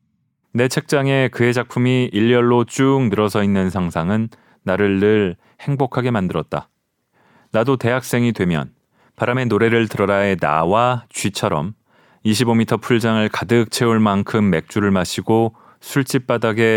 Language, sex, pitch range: Korean, male, 100-125 Hz